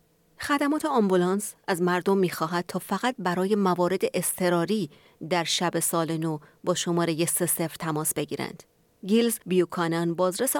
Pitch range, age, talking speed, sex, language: 115-180 Hz, 30-49, 125 wpm, female, Persian